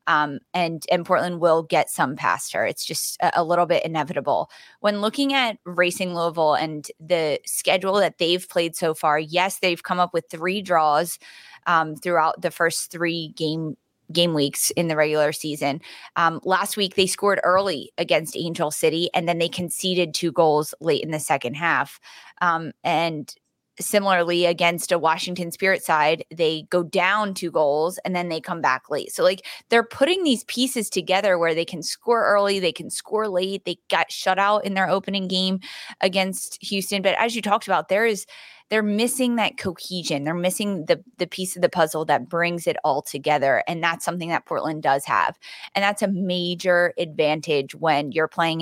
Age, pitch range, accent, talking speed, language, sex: 20-39, 160-195 Hz, American, 190 wpm, English, female